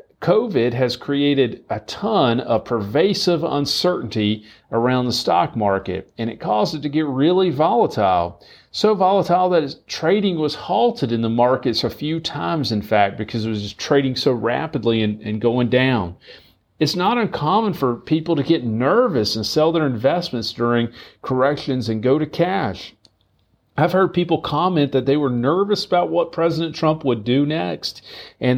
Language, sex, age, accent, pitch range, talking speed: English, male, 40-59, American, 125-180 Hz, 165 wpm